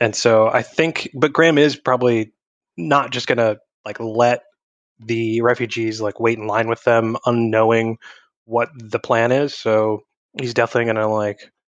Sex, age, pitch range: male, 20-39, 110-125 Hz